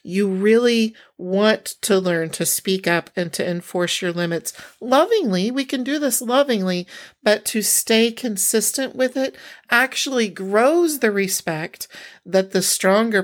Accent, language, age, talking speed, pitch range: American, English, 40-59, 145 wpm, 185-235 Hz